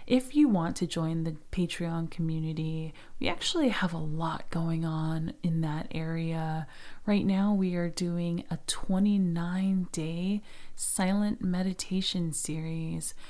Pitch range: 165-195 Hz